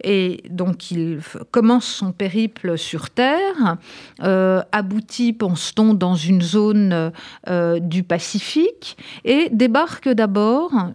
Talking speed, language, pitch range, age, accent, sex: 110 wpm, French, 185-240 Hz, 50-69, French, female